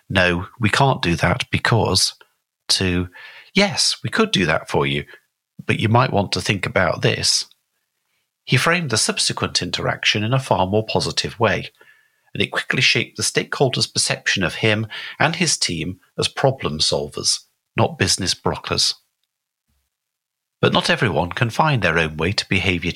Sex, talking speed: male, 160 wpm